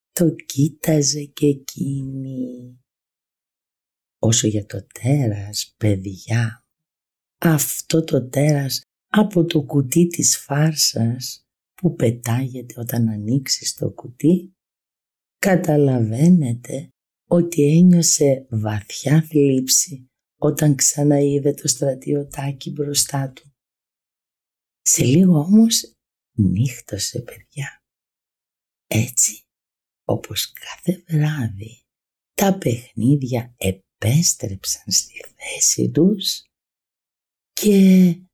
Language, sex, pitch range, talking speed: Greek, female, 115-155 Hz, 80 wpm